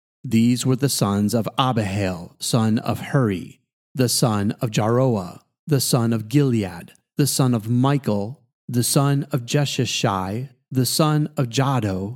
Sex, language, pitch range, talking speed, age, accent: male, English, 115-140 Hz, 145 wpm, 30-49, American